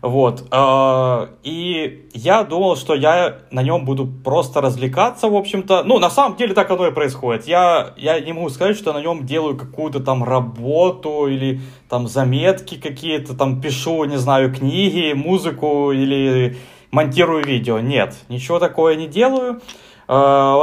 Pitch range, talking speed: 130-165 Hz, 150 wpm